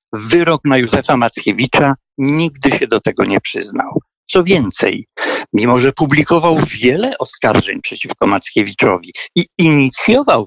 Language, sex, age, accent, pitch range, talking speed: Polish, male, 60-79, native, 125-170 Hz, 120 wpm